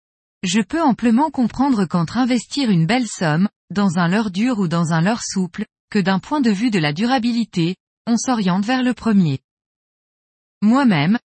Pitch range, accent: 180-245 Hz, French